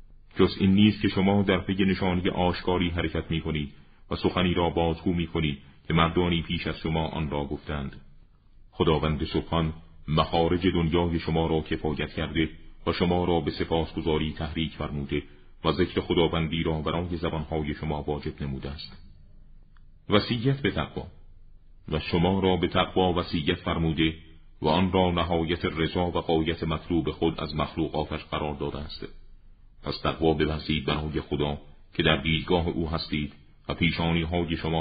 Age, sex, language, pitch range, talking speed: 40-59, male, Persian, 75-90 Hz, 150 wpm